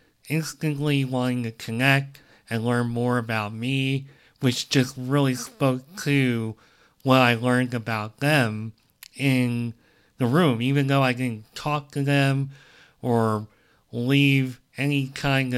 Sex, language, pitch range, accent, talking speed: male, English, 115-140 Hz, American, 125 wpm